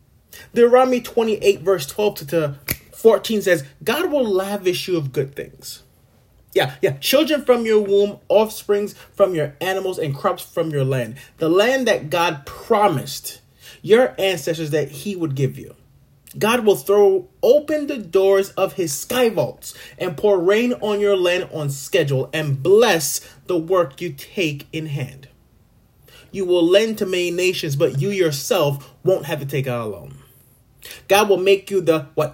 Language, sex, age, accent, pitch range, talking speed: English, male, 30-49, American, 140-200 Hz, 165 wpm